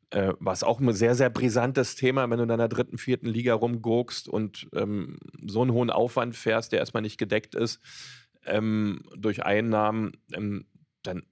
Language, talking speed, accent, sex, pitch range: German, 170 wpm, German, male, 100-120 Hz